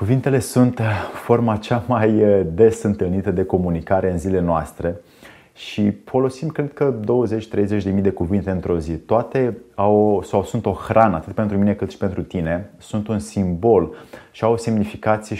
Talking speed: 165 wpm